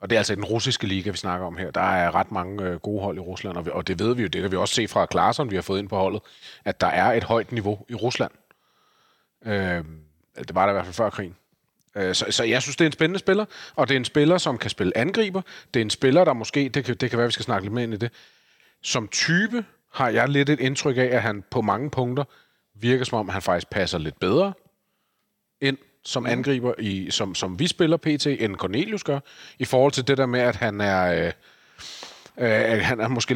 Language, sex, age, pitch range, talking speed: Danish, male, 40-59, 100-130 Hz, 255 wpm